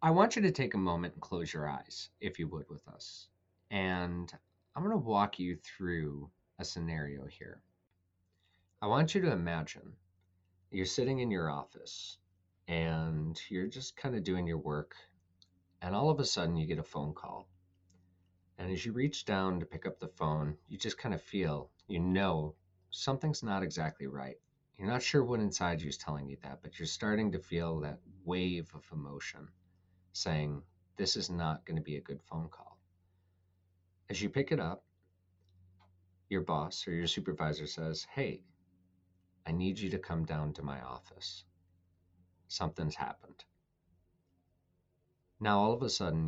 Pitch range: 80-95 Hz